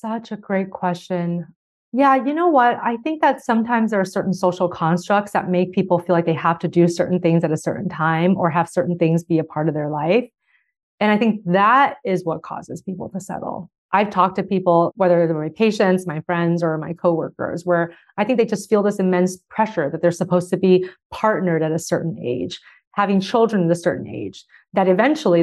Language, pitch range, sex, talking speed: English, 175-225 Hz, female, 215 wpm